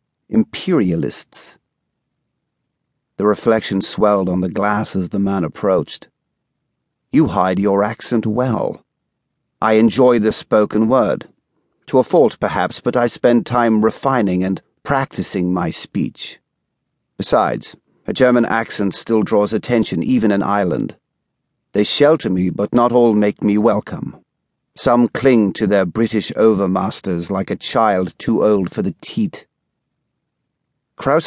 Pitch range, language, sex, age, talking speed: 100-115 Hz, English, male, 50-69, 130 wpm